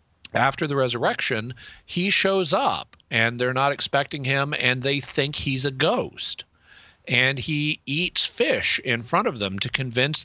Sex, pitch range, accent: male, 115-140 Hz, American